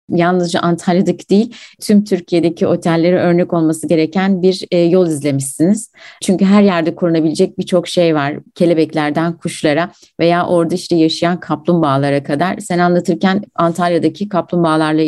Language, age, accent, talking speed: Turkish, 30-49, native, 125 wpm